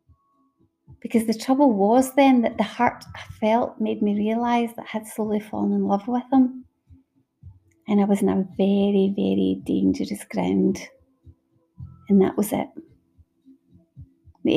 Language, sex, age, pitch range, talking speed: English, female, 30-49, 185-225 Hz, 150 wpm